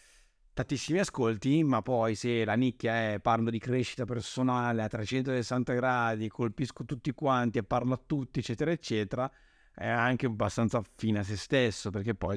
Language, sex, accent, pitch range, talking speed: Italian, male, native, 105-140 Hz, 160 wpm